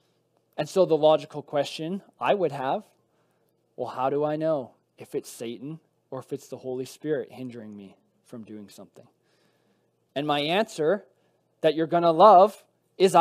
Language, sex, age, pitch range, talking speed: English, male, 20-39, 140-185 Hz, 160 wpm